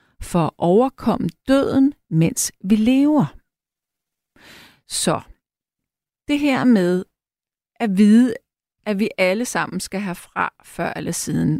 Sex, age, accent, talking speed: female, 40-59, native, 120 wpm